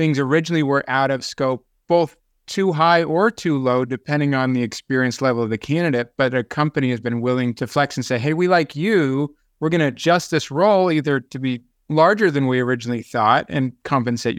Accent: American